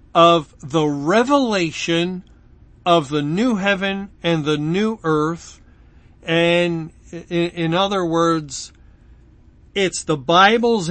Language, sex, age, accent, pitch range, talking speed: English, male, 50-69, American, 155-195 Hz, 100 wpm